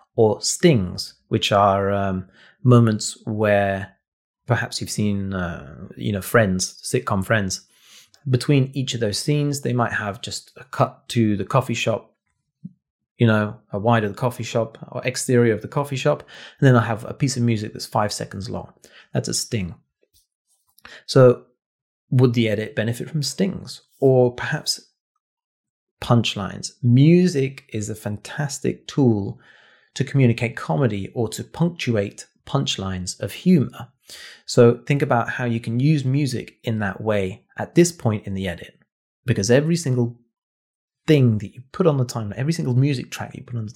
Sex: male